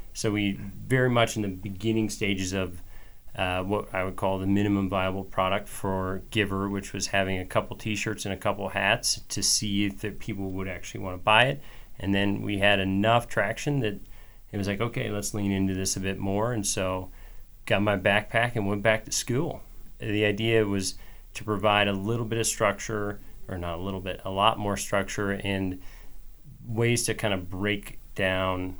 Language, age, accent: English, 30-49, American